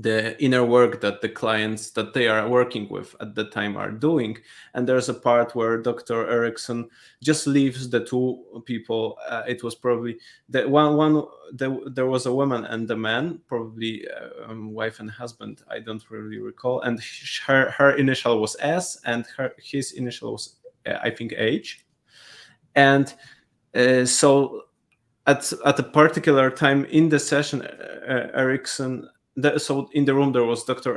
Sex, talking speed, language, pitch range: male, 170 wpm, English, 120-140 Hz